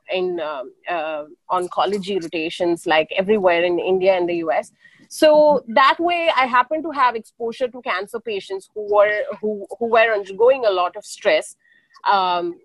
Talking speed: 160 wpm